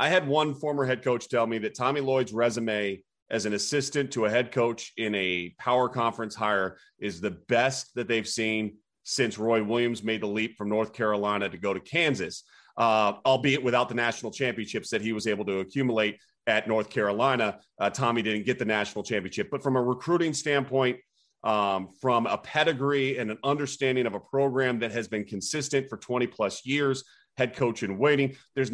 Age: 30-49